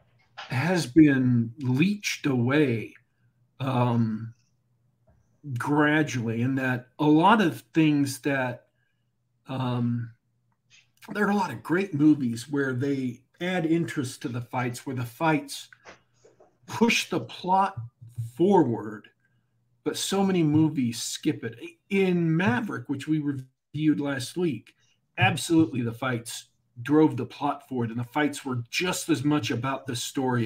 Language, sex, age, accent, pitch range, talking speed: English, male, 50-69, American, 120-155 Hz, 130 wpm